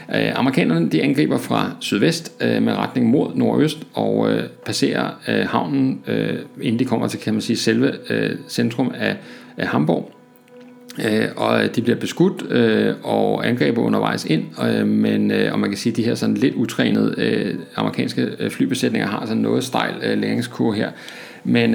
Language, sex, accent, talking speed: Danish, male, native, 170 wpm